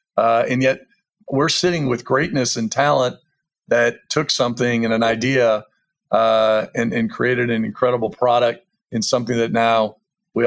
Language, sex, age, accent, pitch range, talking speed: English, male, 40-59, American, 115-135 Hz, 155 wpm